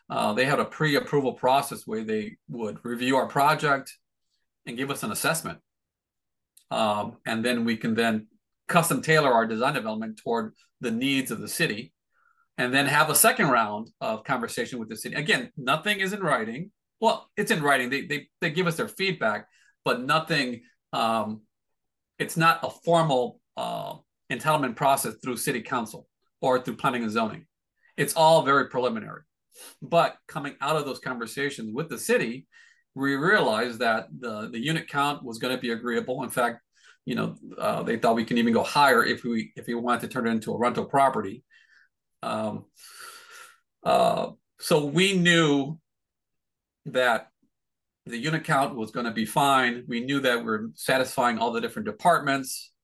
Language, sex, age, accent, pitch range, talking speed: English, male, 40-59, American, 120-170 Hz, 170 wpm